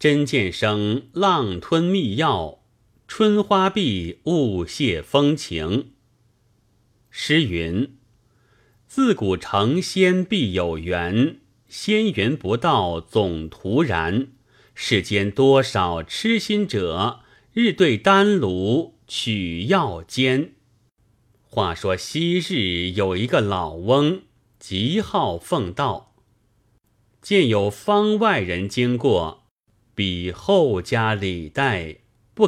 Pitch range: 100-140 Hz